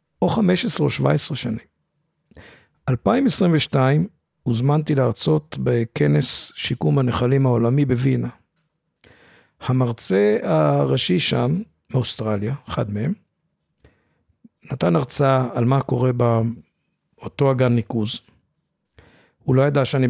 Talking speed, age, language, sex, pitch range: 95 wpm, 50-69, Hebrew, male, 115-145 Hz